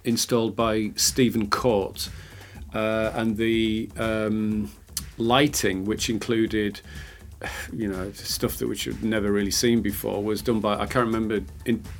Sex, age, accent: male, 40-59, British